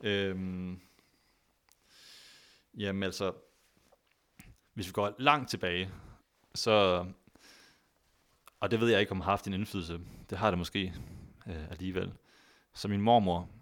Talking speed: 130 wpm